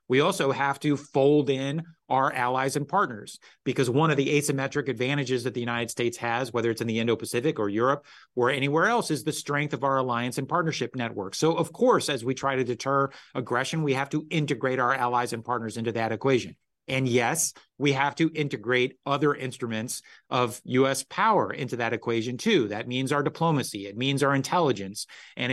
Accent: American